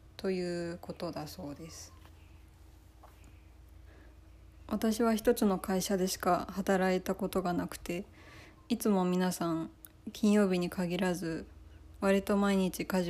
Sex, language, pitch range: female, Japanese, 155-195 Hz